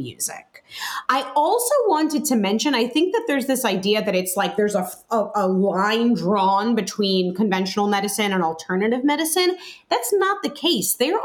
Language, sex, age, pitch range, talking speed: English, female, 30-49, 195-265 Hz, 170 wpm